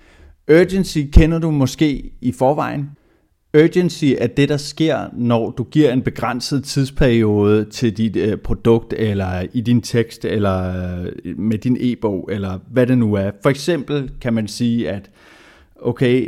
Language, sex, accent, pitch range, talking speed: Danish, male, native, 110-135 Hz, 150 wpm